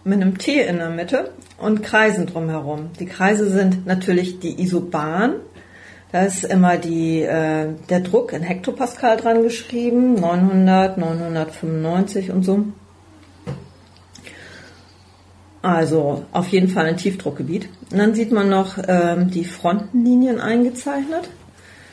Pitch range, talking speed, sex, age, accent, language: 160-210 Hz, 125 wpm, female, 40-59, German, German